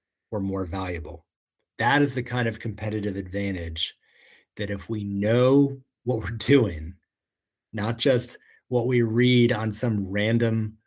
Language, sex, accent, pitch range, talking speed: English, male, American, 95-115 Hz, 140 wpm